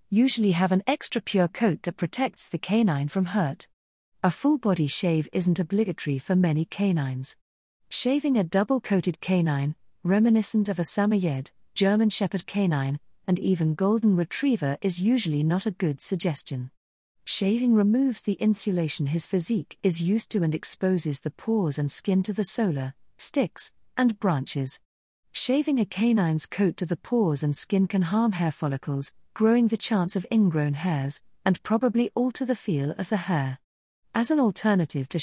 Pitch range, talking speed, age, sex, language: 160-220 Hz, 155 wpm, 40-59, female, English